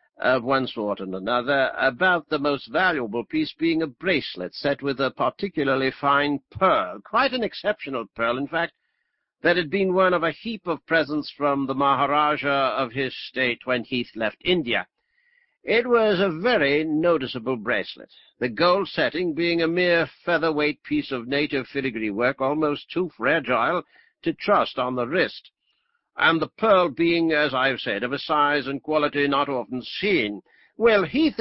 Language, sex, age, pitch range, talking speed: English, male, 60-79, 135-190 Hz, 170 wpm